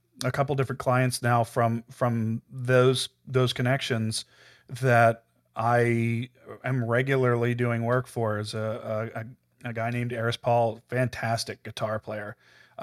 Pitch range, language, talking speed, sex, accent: 115-135 Hz, English, 135 wpm, male, American